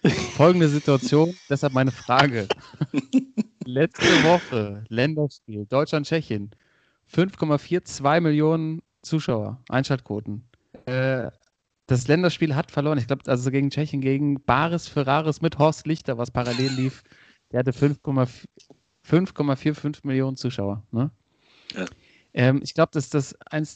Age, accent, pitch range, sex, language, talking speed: 30-49, German, 125-150 Hz, male, German, 110 wpm